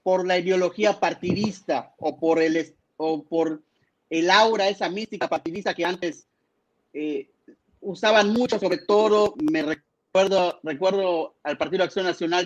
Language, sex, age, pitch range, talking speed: Spanish, male, 40-59, 165-210 Hz, 135 wpm